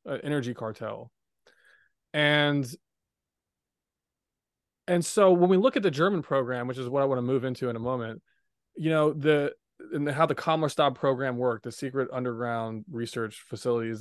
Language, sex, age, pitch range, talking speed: English, male, 20-39, 125-160 Hz, 165 wpm